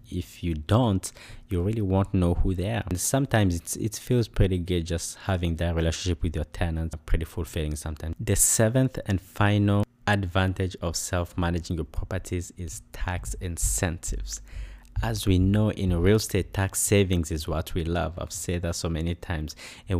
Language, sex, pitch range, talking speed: English, male, 85-105 Hz, 170 wpm